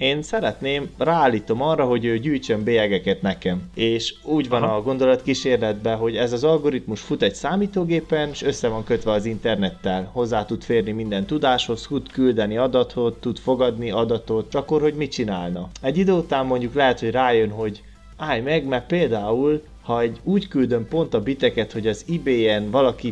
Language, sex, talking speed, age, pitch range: Hungarian, male, 170 wpm, 30-49, 110-140 Hz